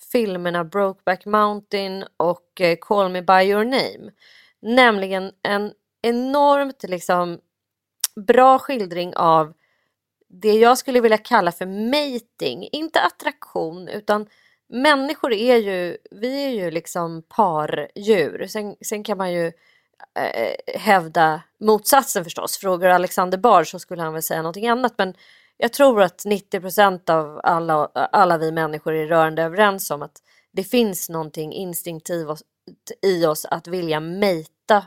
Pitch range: 165-210 Hz